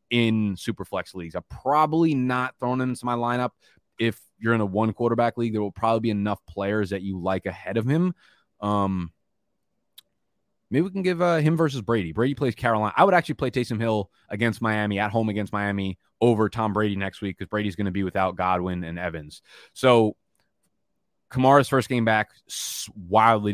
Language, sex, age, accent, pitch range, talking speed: English, male, 20-39, American, 95-115 Hz, 190 wpm